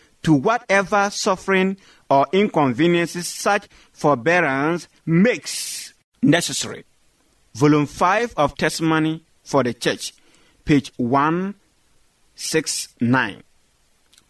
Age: 50-69